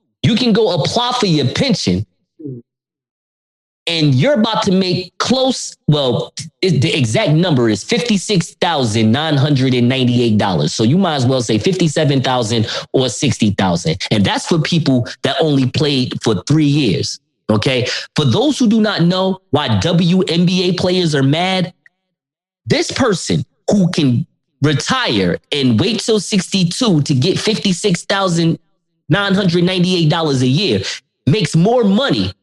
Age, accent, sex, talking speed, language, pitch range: 30-49, American, male, 125 wpm, English, 135-190 Hz